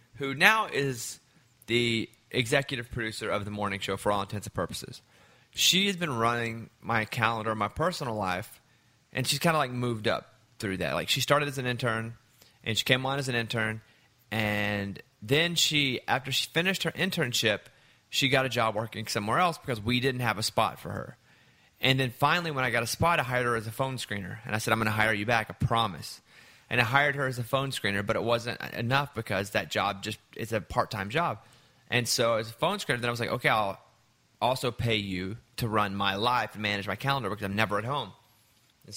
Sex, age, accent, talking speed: male, 30-49, American, 220 wpm